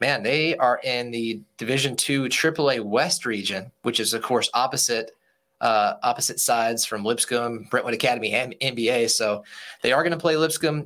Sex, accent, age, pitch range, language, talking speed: male, American, 20-39, 115-130 Hz, English, 170 wpm